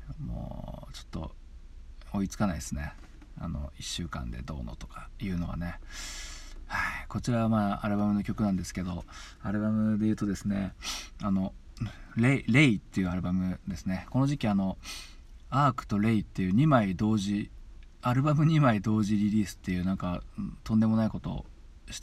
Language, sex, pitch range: Japanese, male, 90-110 Hz